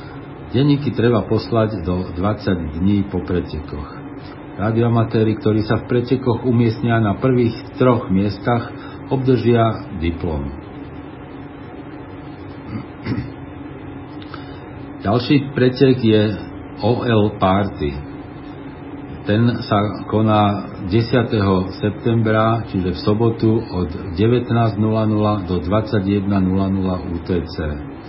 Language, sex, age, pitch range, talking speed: Slovak, male, 50-69, 100-125 Hz, 80 wpm